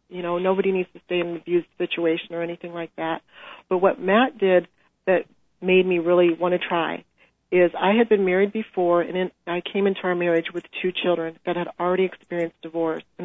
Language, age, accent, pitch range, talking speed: English, 40-59, American, 170-190 Hz, 215 wpm